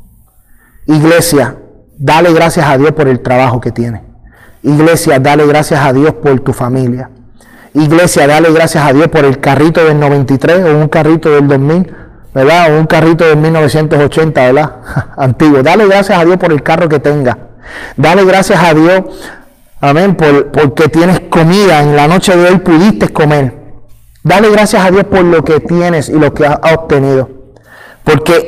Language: Spanish